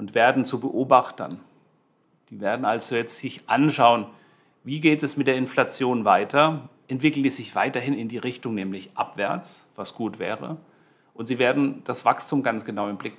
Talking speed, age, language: 175 wpm, 40-59, German